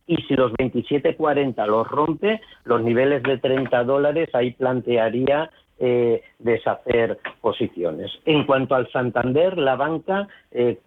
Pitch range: 115-135 Hz